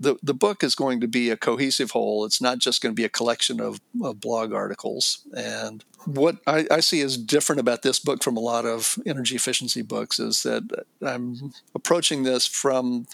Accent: American